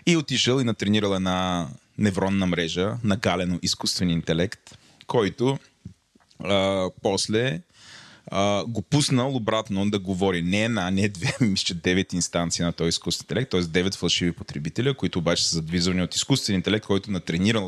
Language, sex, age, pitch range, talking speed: Bulgarian, male, 30-49, 95-115 Hz, 150 wpm